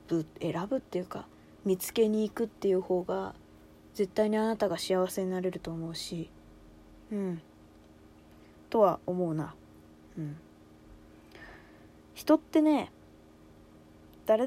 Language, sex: Japanese, female